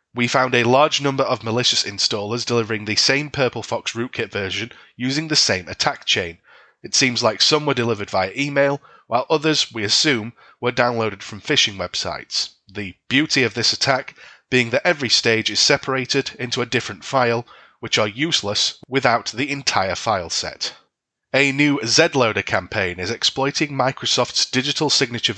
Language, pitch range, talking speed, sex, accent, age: English, 110-140 Hz, 165 wpm, male, British, 30-49